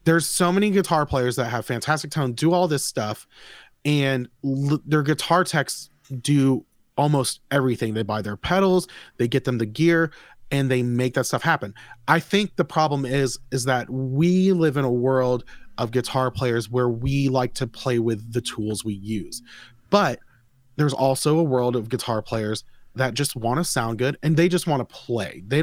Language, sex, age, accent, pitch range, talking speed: English, male, 30-49, American, 125-155 Hz, 190 wpm